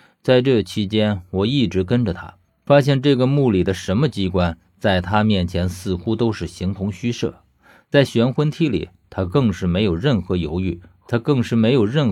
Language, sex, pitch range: Chinese, male, 90-125 Hz